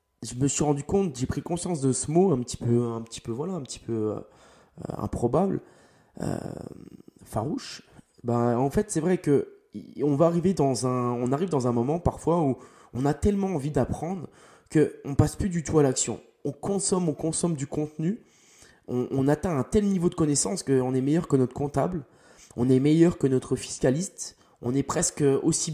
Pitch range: 130-175 Hz